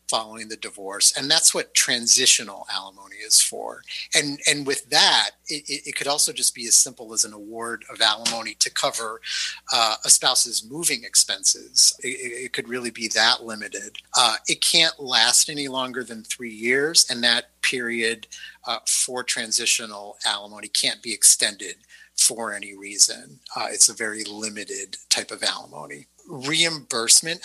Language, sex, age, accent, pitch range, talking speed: English, male, 30-49, American, 110-150 Hz, 155 wpm